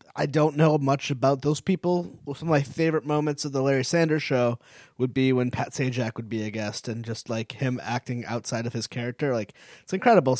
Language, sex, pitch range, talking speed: English, male, 125-155 Hz, 220 wpm